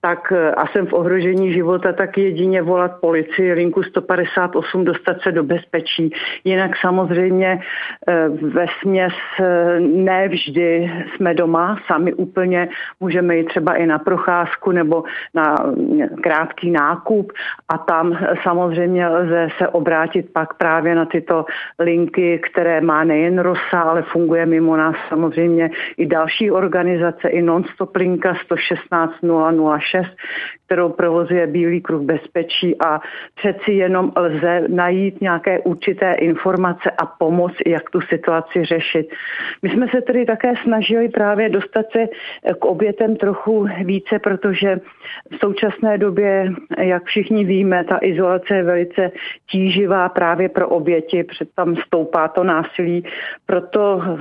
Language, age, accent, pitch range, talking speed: Czech, 50-69, native, 170-190 Hz, 125 wpm